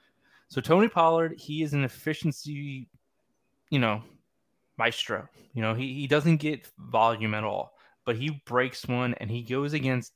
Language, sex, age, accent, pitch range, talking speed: English, male, 20-39, American, 115-145 Hz, 160 wpm